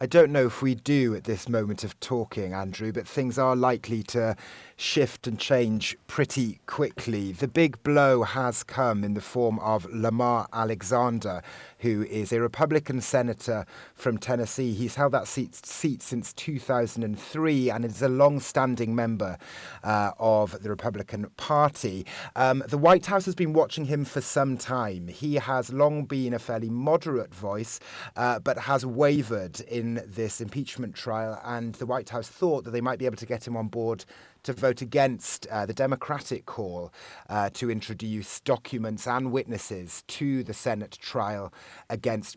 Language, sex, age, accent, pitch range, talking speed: English, male, 30-49, British, 110-130 Hz, 165 wpm